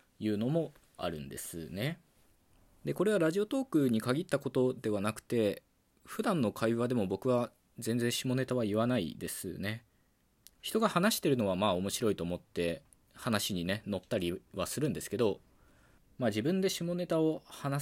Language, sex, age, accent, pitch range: Japanese, male, 20-39, native, 90-125 Hz